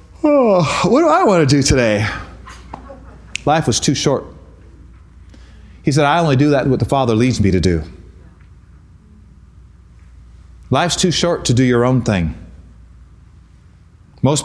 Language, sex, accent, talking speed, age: English, male, American, 140 wpm, 30-49